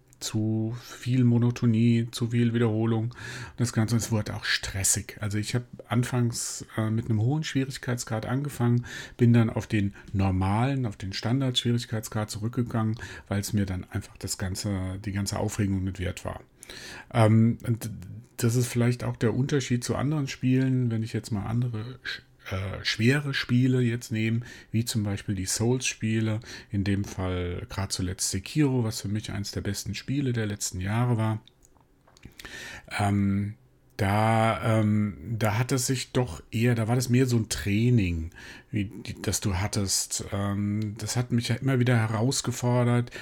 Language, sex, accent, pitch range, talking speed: German, male, German, 105-125 Hz, 160 wpm